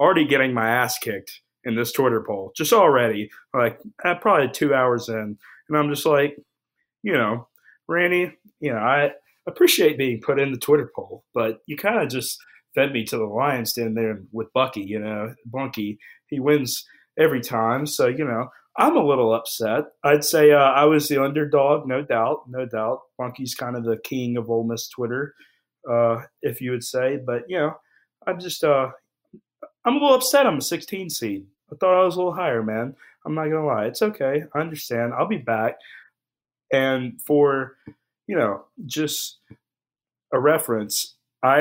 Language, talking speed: English, 185 wpm